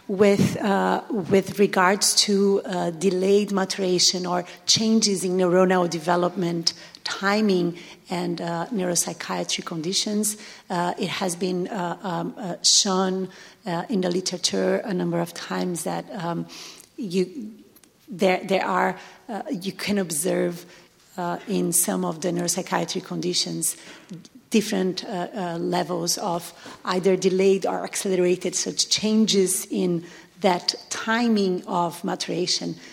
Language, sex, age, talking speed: English, female, 40-59, 125 wpm